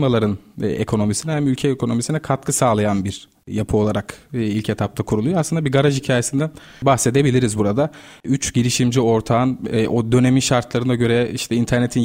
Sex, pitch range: male, 115-140 Hz